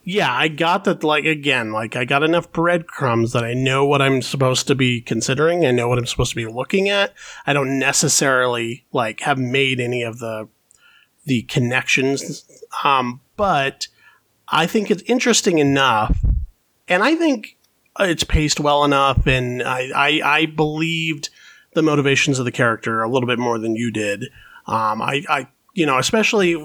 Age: 30-49